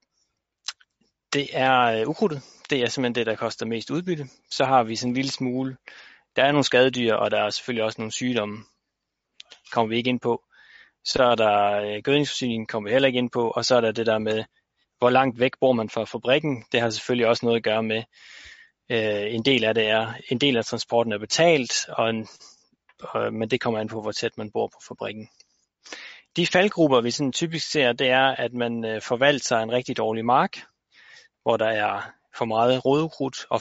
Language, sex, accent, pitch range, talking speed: Danish, male, native, 115-135 Hz, 205 wpm